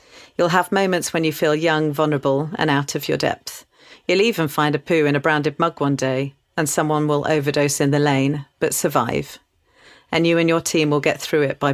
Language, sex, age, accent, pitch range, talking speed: English, female, 40-59, British, 140-160 Hz, 220 wpm